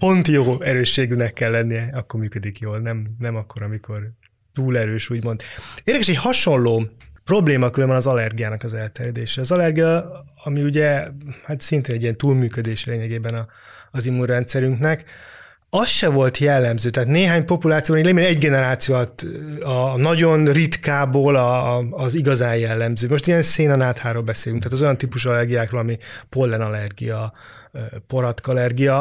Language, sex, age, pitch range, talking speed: Hungarian, male, 20-39, 115-150 Hz, 130 wpm